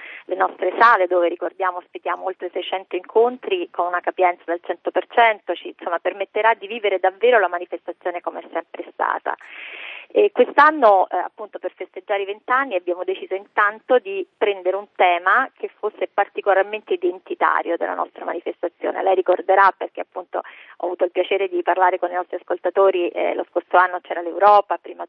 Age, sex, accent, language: 30-49, female, native, Italian